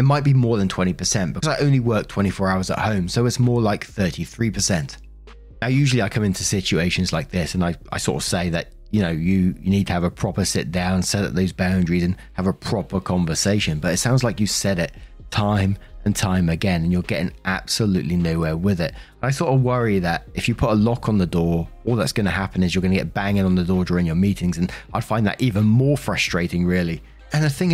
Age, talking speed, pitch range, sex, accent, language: 30-49, 245 wpm, 90-120 Hz, male, British, English